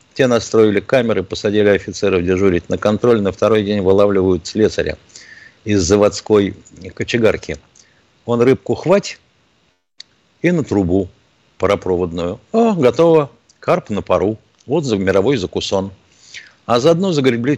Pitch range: 90-120 Hz